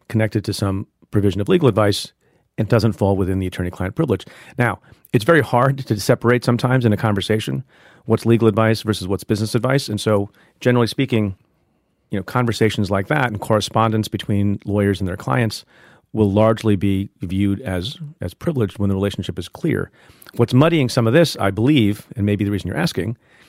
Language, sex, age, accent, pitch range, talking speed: English, male, 40-59, American, 100-120 Hz, 185 wpm